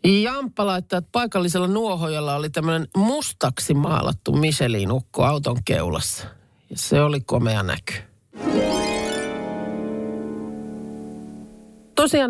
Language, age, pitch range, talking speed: Finnish, 40-59, 125-185 Hz, 85 wpm